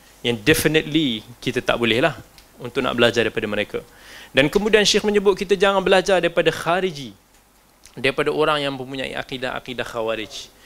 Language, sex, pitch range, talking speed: Malay, male, 135-175 Hz, 145 wpm